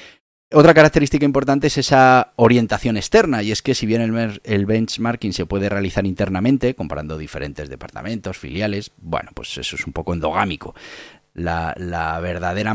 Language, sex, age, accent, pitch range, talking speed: Spanish, male, 30-49, Spanish, 90-120 Hz, 155 wpm